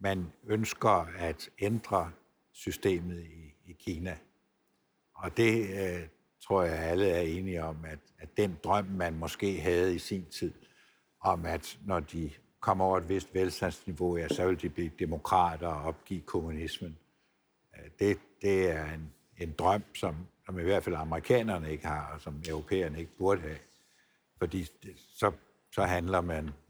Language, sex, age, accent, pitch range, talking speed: Danish, male, 60-79, native, 80-95 Hz, 155 wpm